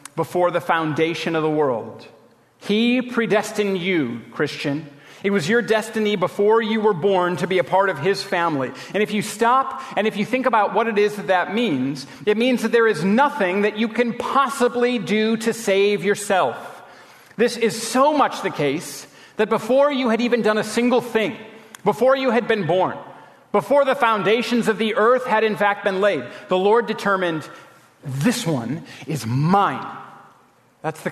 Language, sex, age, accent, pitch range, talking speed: English, male, 40-59, American, 150-215 Hz, 180 wpm